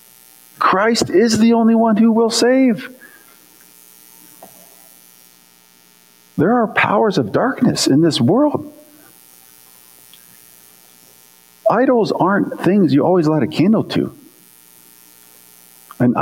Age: 50-69